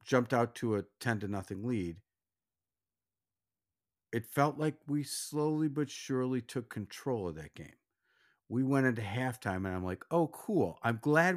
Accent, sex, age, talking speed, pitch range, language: American, male, 50-69, 165 wpm, 100-135 Hz, English